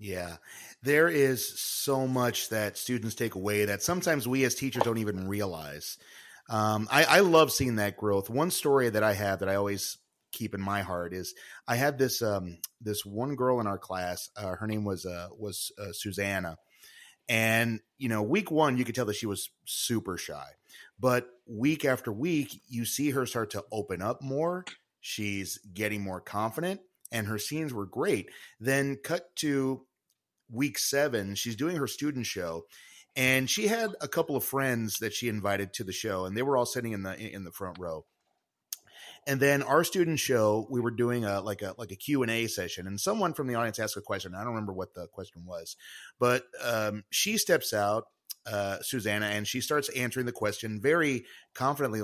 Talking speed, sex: 195 wpm, male